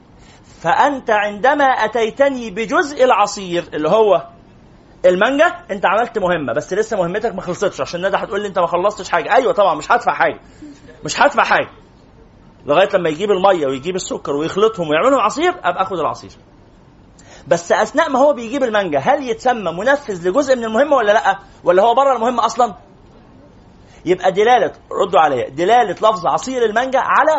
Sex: male